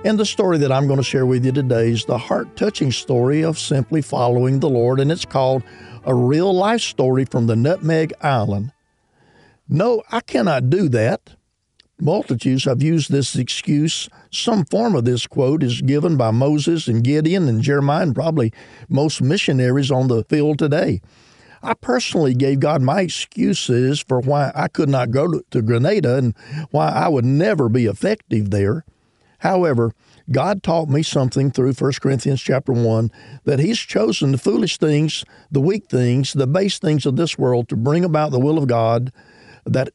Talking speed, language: 175 wpm, English